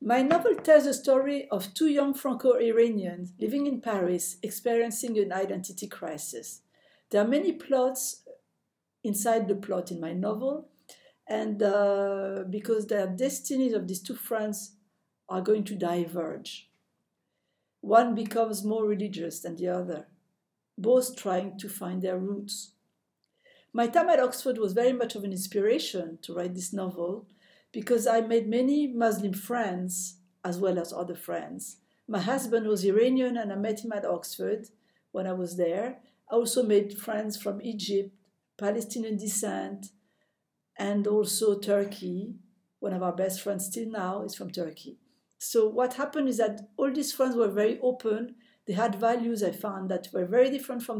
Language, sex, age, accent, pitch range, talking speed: English, female, 50-69, French, 195-240 Hz, 155 wpm